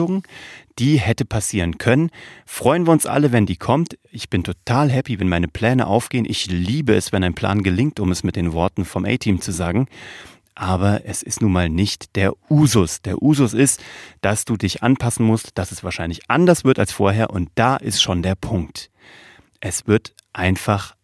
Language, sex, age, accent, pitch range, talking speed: German, male, 30-49, German, 95-130 Hz, 190 wpm